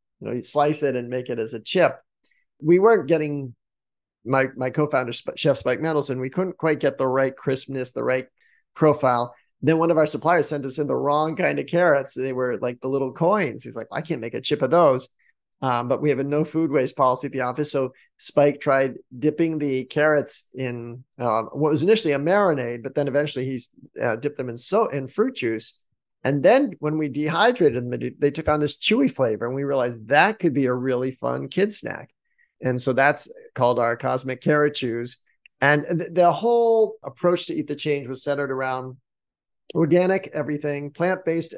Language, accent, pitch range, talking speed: English, American, 130-155 Hz, 205 wpm